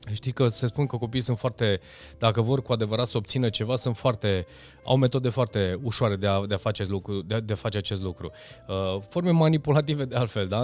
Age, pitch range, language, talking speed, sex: 20-39, 105-135 Hz, Romanian, 225 wpm, male